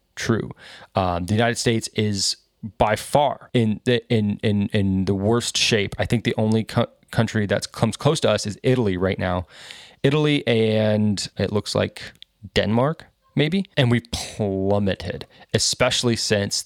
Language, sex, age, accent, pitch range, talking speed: English, male, 20-39, American, 100-125 Hz, 160 wpm